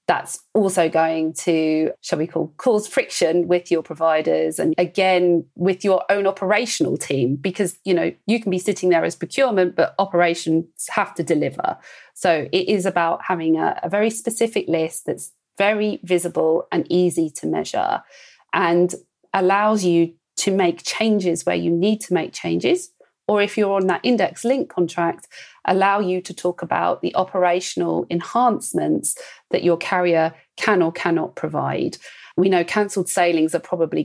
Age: 40-59